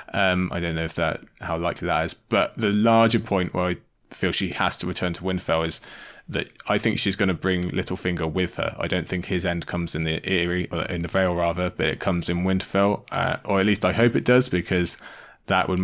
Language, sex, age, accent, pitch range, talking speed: English, male, 20-39, British, 85-100 Hz, 245 wpm